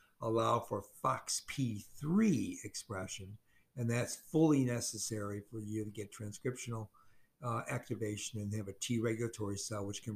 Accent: American